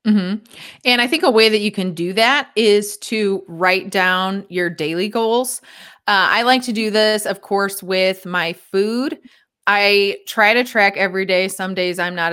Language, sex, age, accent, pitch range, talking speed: English, female, 20-39, American, 180-210 Hz, 190 wpm